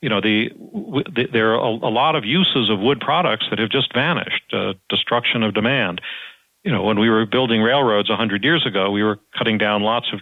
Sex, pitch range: male, 100-115 Hz